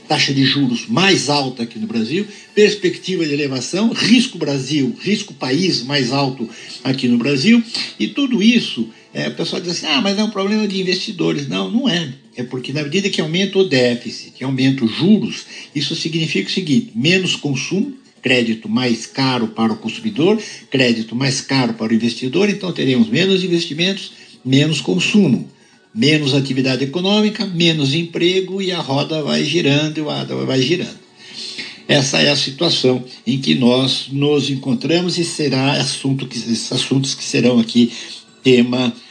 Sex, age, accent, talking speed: male, 60-79, Brazilian, 165 wpm